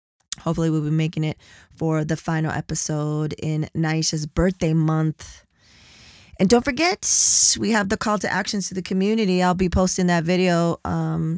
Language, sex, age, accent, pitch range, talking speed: English, female, 20-39, American, 155-180 Hz, 165 wpm